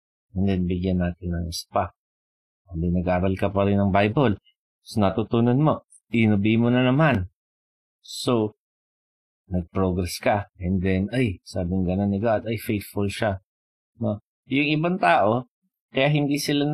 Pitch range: 100-125 Hz